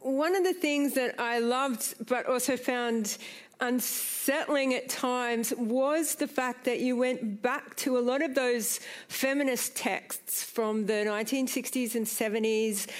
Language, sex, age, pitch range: English, female, 50-69, 230-265 Hz